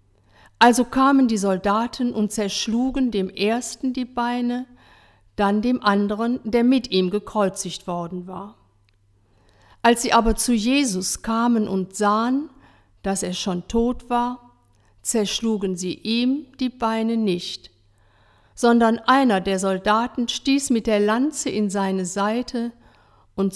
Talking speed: 125 wpm